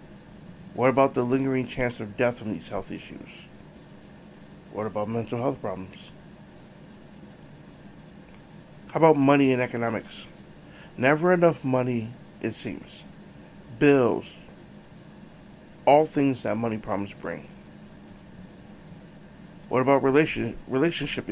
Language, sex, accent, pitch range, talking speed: English, male, American, 115-150 Hz, 100 wpm